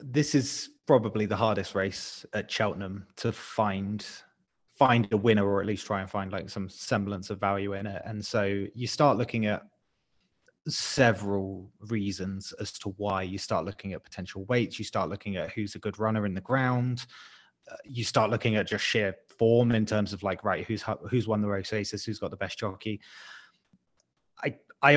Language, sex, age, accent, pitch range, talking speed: English, male, 20-39, British, 100-125 Hz, 185 wpm